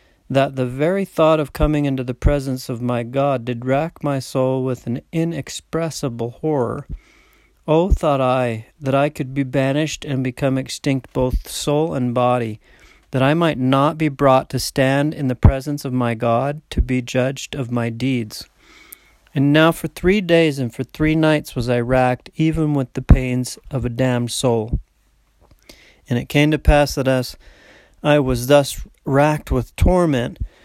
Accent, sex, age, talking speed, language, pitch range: American, male, 40-59, 170 wpm, English, 125-150 Hz